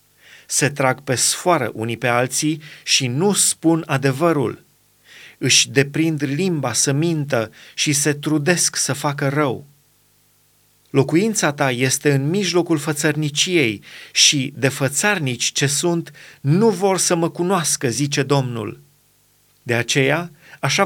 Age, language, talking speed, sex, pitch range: 30-49, Romanian, 125 wpm, male, 135-165 Hz